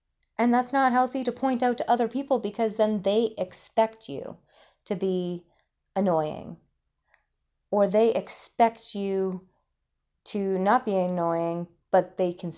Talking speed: 140 wpm